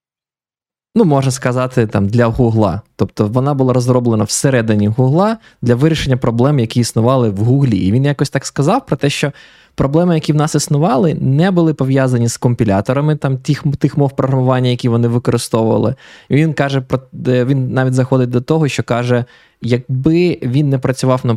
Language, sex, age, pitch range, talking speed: Ukrainian, male, 20-39, 120-150 Hz, 170 wpm